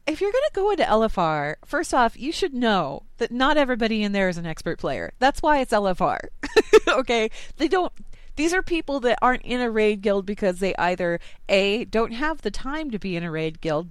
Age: 30-49